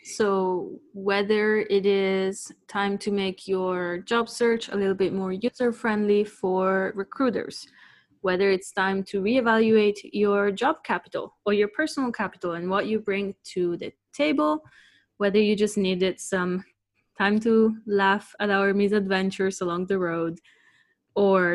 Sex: female